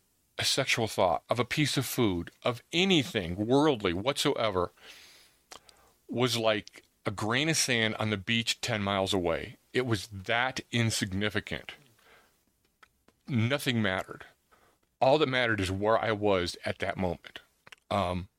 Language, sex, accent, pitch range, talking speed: English, male, American, 105-130 Hz, 135 wpm